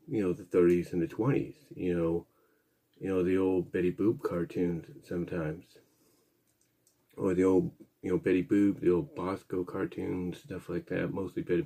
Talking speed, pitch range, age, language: 170 wpm, 90-110 Hz, 30-49, English